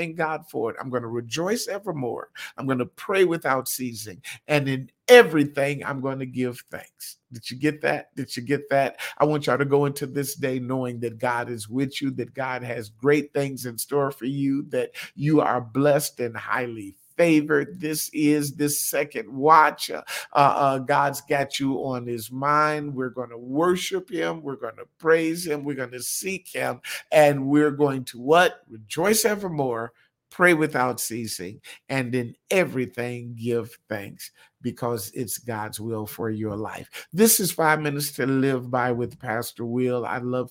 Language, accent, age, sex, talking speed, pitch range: English, American, 50-69, male, 180 wpm, 120-155 Hz